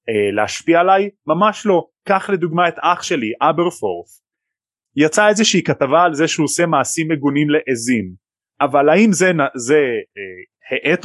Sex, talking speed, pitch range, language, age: male, 130 wpm, 120-175 Hz, Hebrew, 30-49